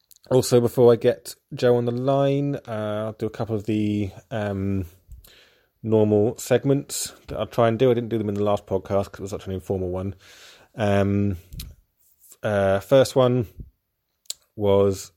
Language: English